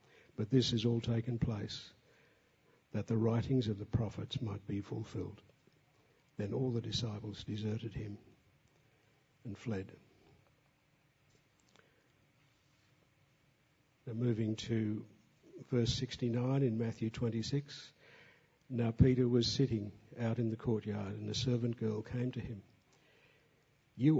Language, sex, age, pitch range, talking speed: English, male, 60-79, 110-130 Hz, 115 wpm